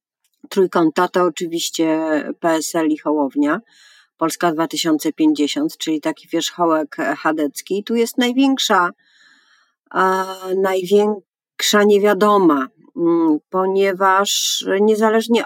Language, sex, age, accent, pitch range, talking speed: Polish, female, 40-59, native, 160-215 Hz, 75 wpm